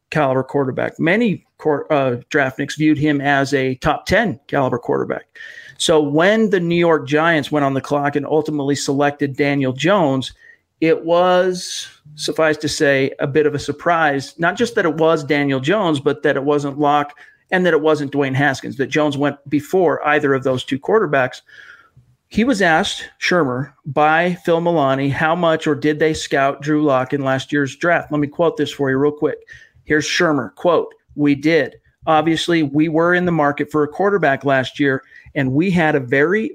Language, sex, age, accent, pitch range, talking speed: English, male, 50-69, American, 140-160 Hz, 185 wpm